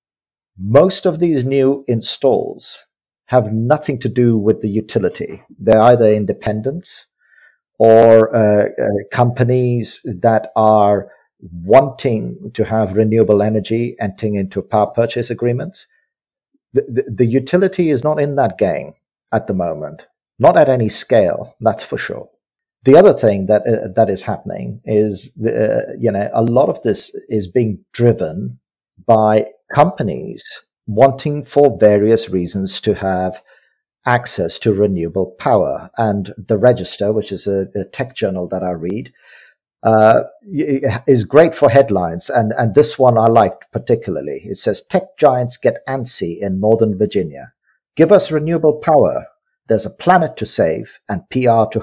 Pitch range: 105-135 Hz